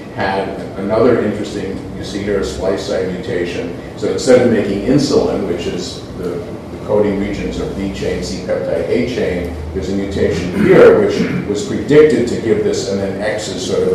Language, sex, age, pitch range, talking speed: English, male, 50-69, 95-110 Hz, 170 wpm